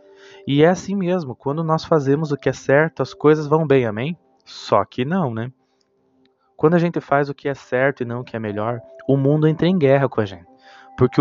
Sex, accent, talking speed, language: male, Brazilian, 230 wpm, Portuguese